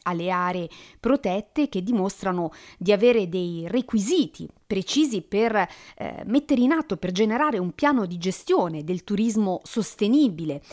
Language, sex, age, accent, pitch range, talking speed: Italian, female, 40-59, native, 170-225 Hz, 135 wpm